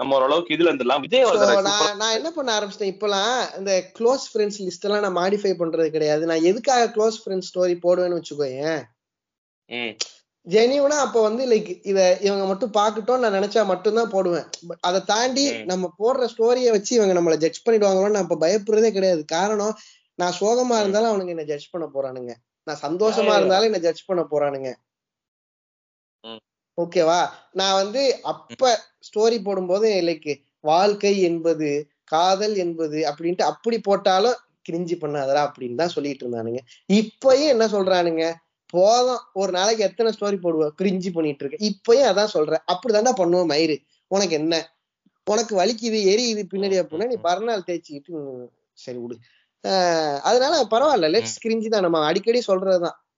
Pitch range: 165-220 Hz